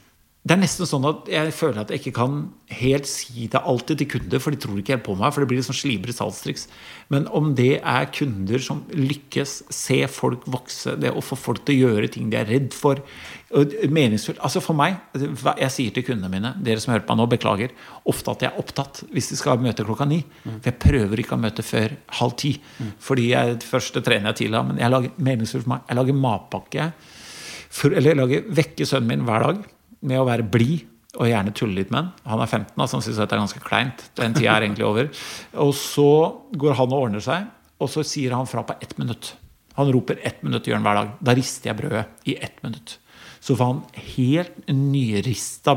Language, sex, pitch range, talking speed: English, male, 115-145 Hz, 225 wpm